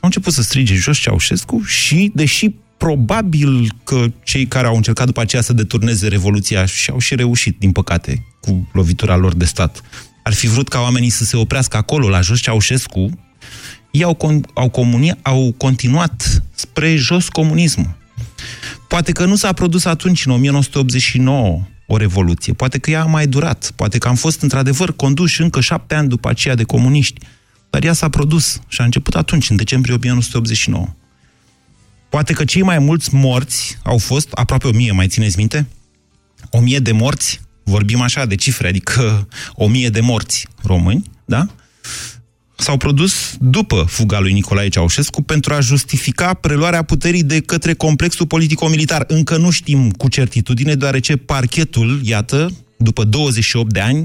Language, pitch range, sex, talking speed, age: Romanian, 110-150 Hz, male, 165 wpm, 30-49